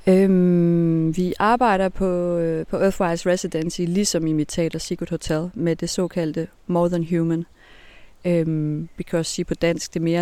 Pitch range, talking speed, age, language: 155-185 Hz, 145 wpm, 30-49, Danish